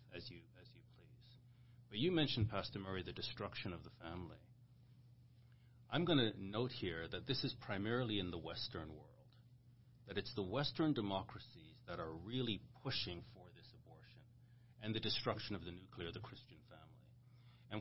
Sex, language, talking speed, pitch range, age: male, English, 170 wpm, 105-125 Hz, 40-59